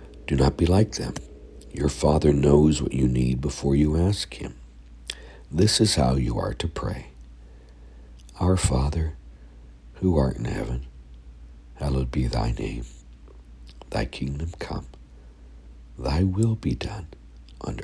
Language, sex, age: English, male, 60-79